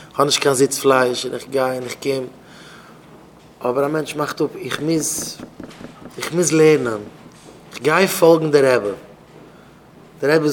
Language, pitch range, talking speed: English, 135-175 Hz, 160 wpm